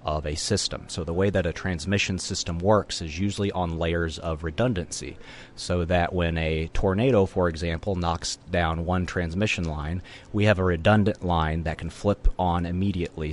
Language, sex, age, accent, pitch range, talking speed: English, male, 30-49, American, 80-95 Hz, 175 wpm